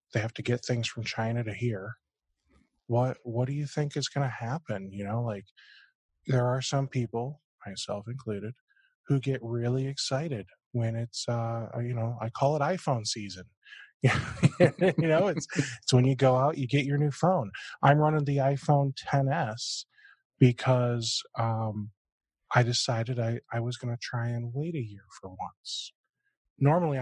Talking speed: 170 wpm